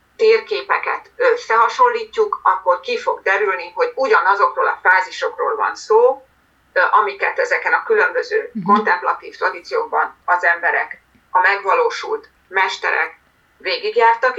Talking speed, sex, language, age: 100 wpm, female, Hungarian, 30-49